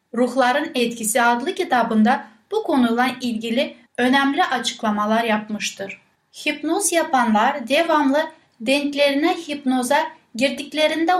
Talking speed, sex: 85 wpm, female